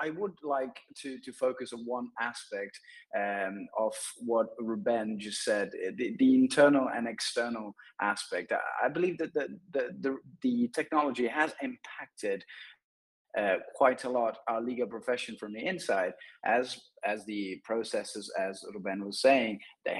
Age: 20-39